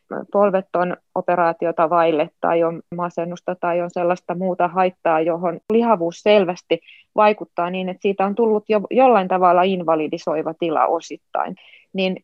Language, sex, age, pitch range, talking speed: Finnish, female, 20-39, 175-225 Hz, 130 wpm